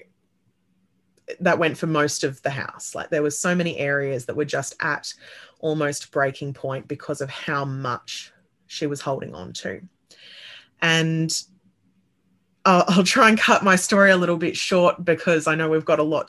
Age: 20-39